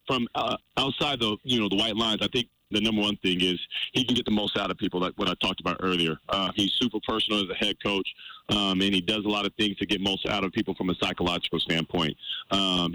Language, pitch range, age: English, 95-110 Hz, 30-49